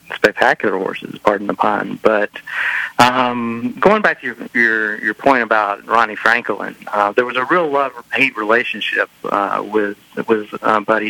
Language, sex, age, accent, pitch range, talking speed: English, male, 40-59, American, 105-115 Hz, 170 wpm